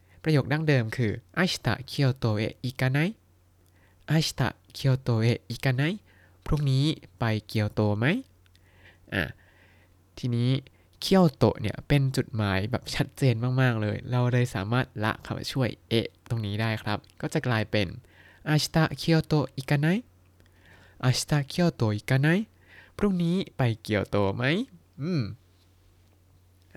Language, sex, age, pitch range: Thai, male, 20-39, 95-150 Hz